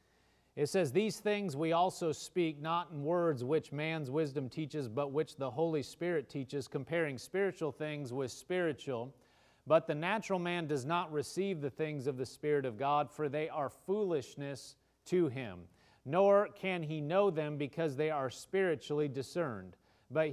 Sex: male